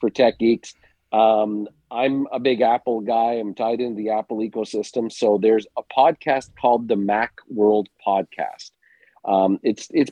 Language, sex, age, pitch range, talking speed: English, male, 40-59, 100-120 Hz, 160 wpm